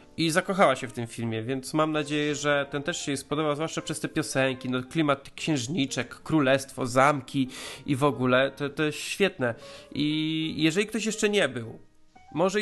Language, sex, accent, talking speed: Polish, male, native, 175 wpm